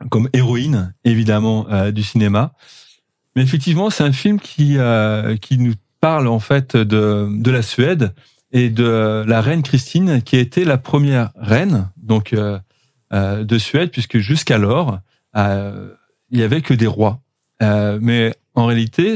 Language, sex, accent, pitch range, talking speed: French, male, French, 105-130 Hz, 160 wpm